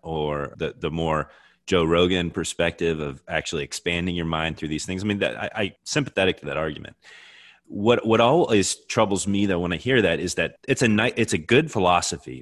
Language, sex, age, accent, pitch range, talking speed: English, male, 30-49, American, 75-100 Hz, 205 wpm